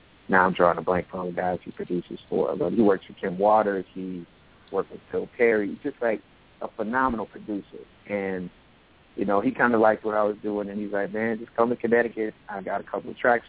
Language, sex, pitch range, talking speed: English, male, 95-110 Hz, 235 wpm